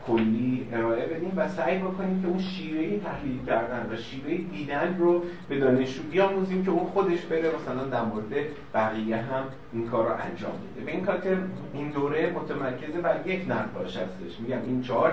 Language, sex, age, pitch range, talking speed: Persian, male, 30-49, 120-165 Hz, 170 wpm